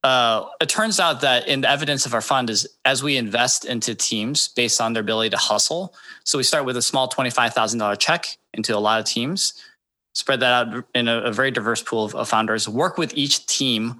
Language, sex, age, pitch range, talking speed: English, male, 20-39, 110-135 Hz, 225 wpm